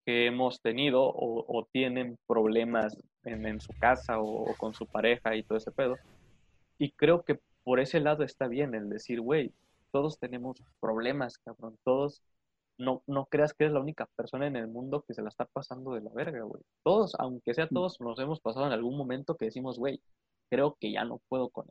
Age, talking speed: 20-39, 205 wpm